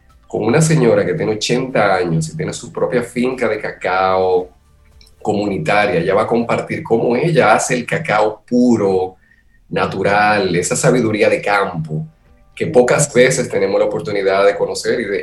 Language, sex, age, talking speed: Spanish, male, 30-49, 160 wpm